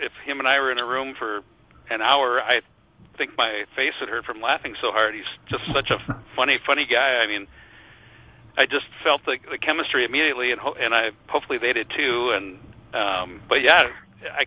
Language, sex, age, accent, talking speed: English, male, 50-69, American, 205 wpm